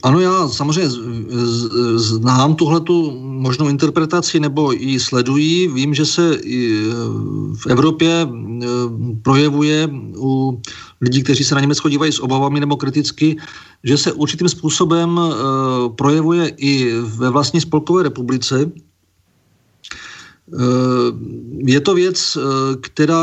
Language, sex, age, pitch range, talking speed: Czech, male, 40-59, 125-160 Hz, 105 wpm